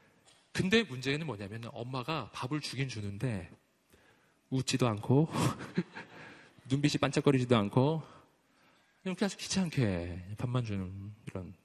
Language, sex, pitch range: Korean, male, 110-160 Hz